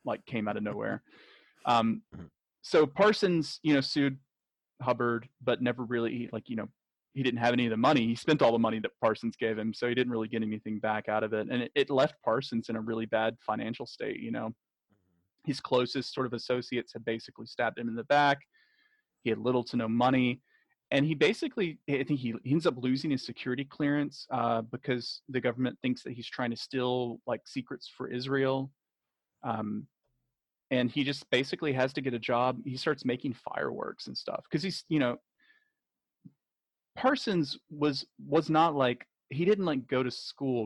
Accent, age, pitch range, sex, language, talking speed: American, 30-49, 120-140 Hz, male, English, 195 wpm